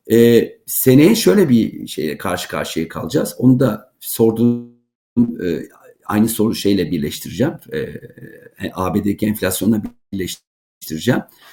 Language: Turkish